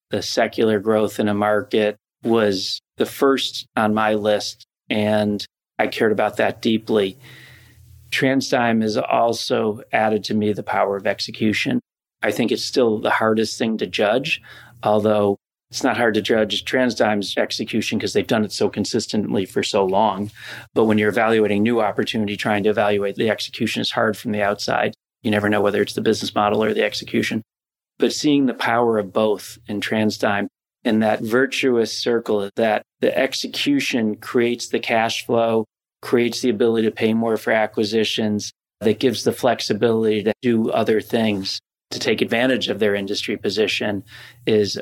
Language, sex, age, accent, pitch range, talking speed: English, male, 40-59, American, 105-120 Hz, 165 wpm